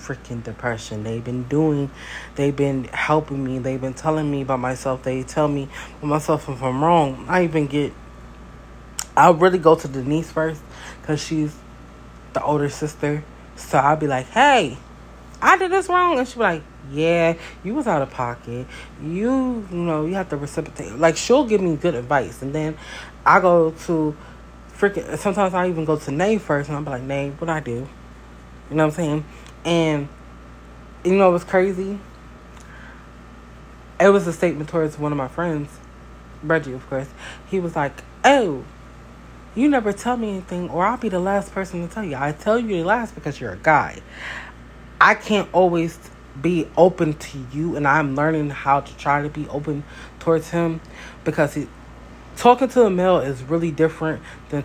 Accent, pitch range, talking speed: American, 130-170 Hz, 180 wpm